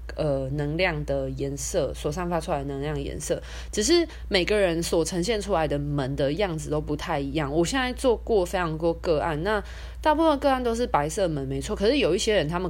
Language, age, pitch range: Chinese, 20-39, 145-205 Hz